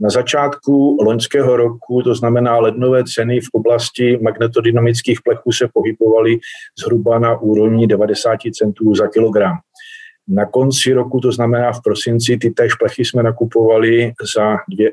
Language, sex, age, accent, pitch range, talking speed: Czech, male, 40-59, native, 110-125 Hz, 135 wpm